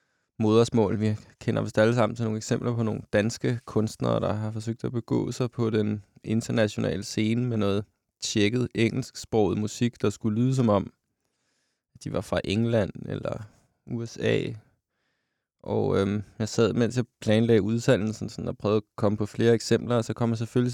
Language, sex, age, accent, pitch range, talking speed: Danish, male, 20-39, native, 110-125 Hz, 175 wpm